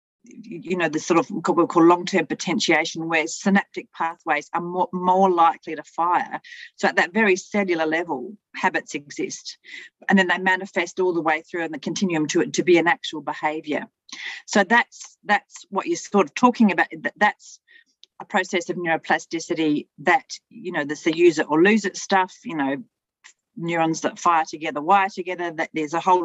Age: 40-59